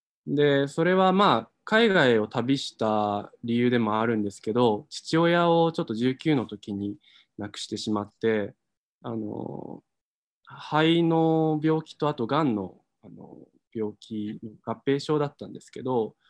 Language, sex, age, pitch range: Japanese, male, 20-39, 105-155 Hz